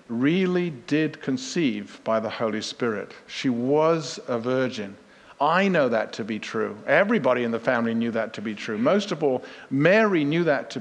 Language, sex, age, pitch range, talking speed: English, male, 50-69, 130-180 Hz, 185 wpm